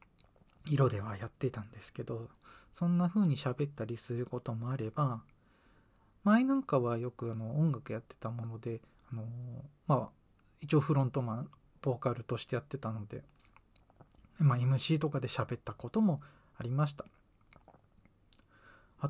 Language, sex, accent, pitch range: Japanese, male, native, 115-150 Hz